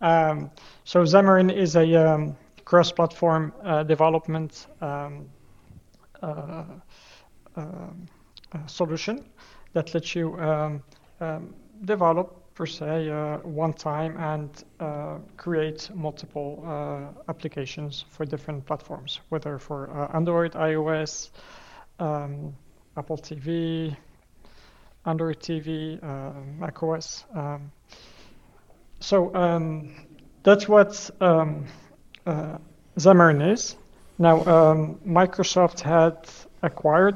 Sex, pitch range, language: male, 150-170 Hz, English